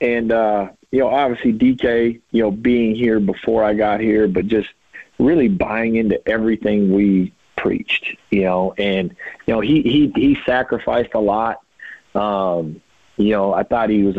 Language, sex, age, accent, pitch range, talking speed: English, male, 40-59, American, 100-115 Hz, 170 wpm